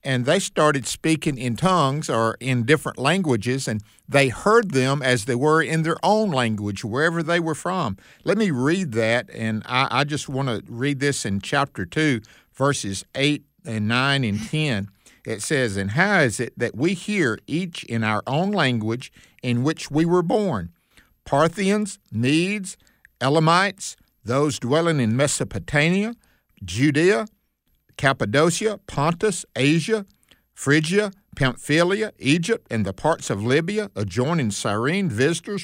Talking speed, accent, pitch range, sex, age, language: 145 wpm, American, 120-175 Hz, male, 50-69, English